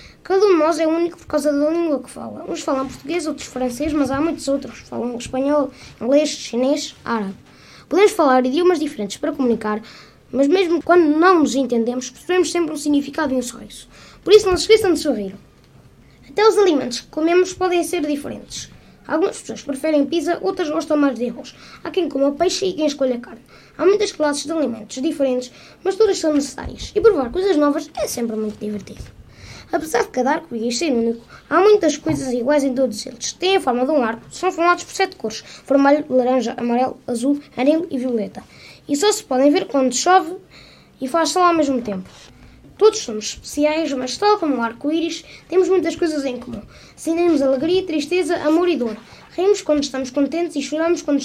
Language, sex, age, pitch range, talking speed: Portuguese, female, 20-39, 260-340 Hz, 195 wpm